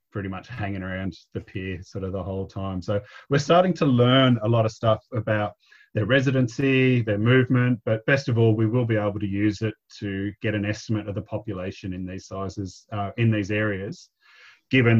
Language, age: English, 30-49